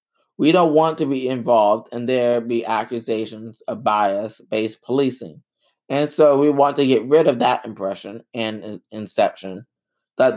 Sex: male